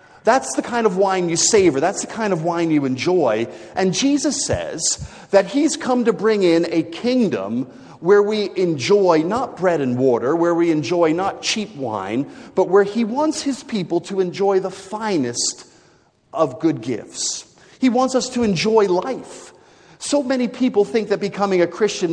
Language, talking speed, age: English, 175 wpm, 40-59